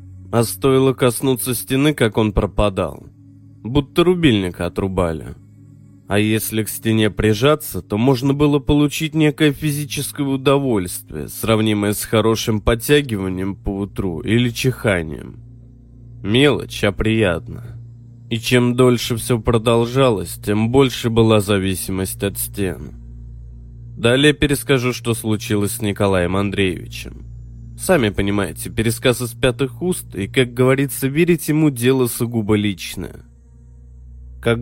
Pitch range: 100-125 Hz